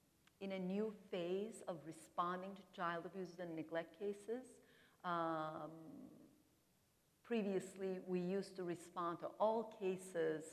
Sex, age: female, 50-69